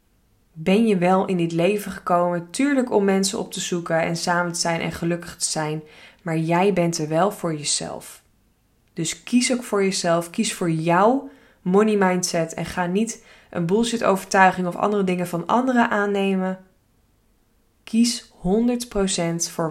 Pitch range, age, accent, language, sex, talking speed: 170-210 Hz, 20-39, Dutch, Dutch, female, 160 wpm